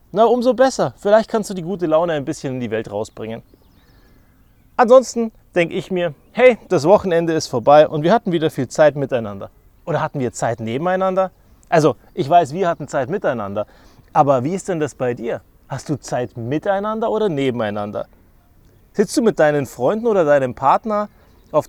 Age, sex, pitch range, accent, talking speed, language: 30-49, male, 120-190 Hz, German, 180 wpm, German